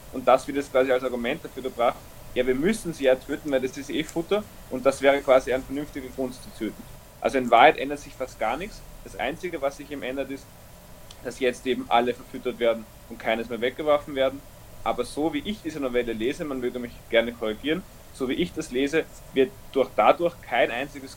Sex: male